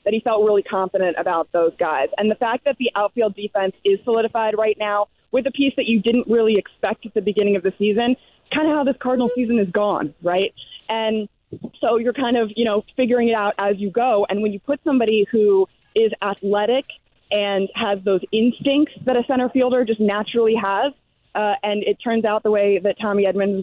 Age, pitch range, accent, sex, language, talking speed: 20-39, 200-235 Hz, American, female, English, 215 wpm